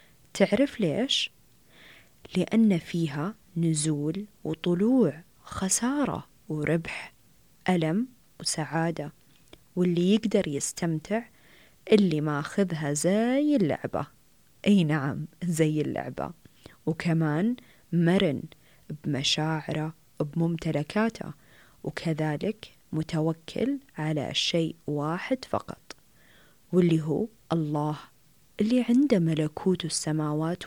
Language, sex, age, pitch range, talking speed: Arabic, female, 20-39, 155-200 Hz, 75 wpm